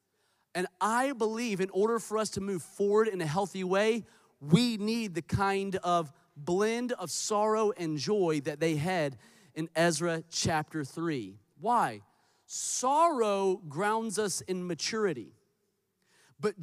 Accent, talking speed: American, 135 wpm